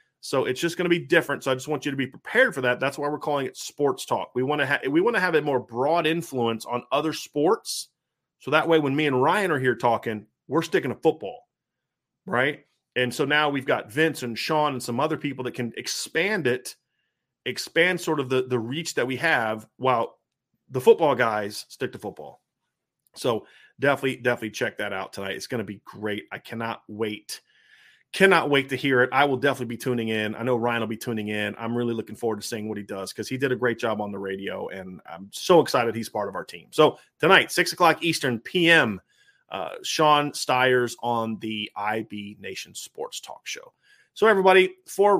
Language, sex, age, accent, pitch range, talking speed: English, male, 30-49, American, 115-155 Hz, 220 wpm